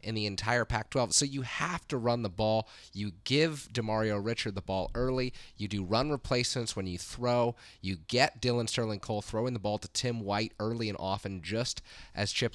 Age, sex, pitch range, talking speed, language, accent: 30-49, male, 95-115 Hz, 200 wpm, English, American